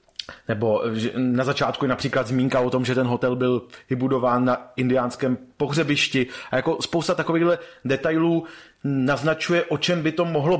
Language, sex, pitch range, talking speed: Czech, male, 130-145 Hz, 155 wpm